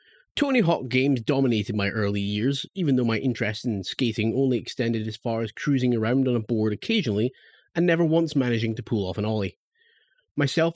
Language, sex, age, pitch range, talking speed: English, male, 30-49, 110-150 Hz, 190 wpm